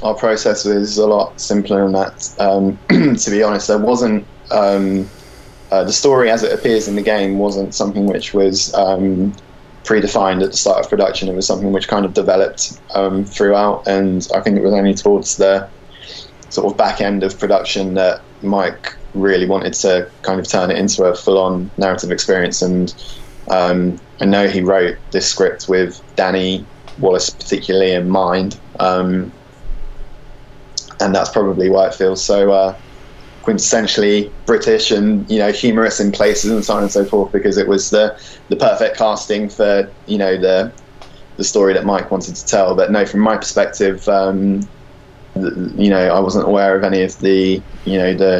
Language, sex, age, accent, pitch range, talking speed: English, male, 10-29, British, 95-105 Hz, 180 wpm